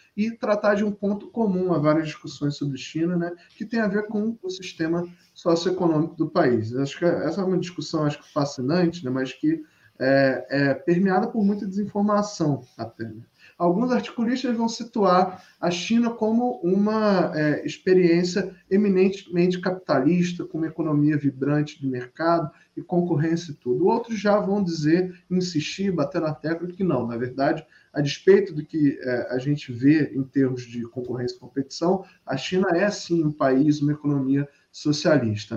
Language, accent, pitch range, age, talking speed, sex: Portuguese, Brazilian, 145-195 Hz, 20-39, 165 wpm, male